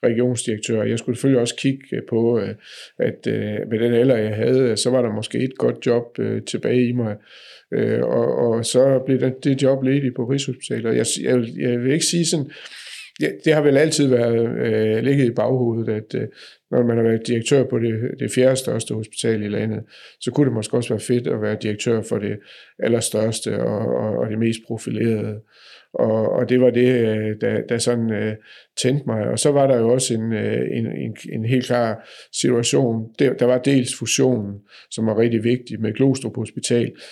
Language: Danish